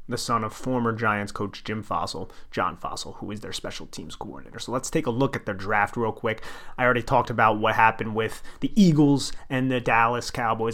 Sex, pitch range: male, 110-120 Hz